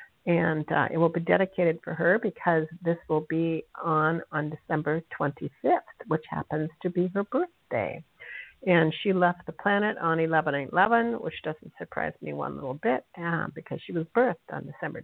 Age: 50-69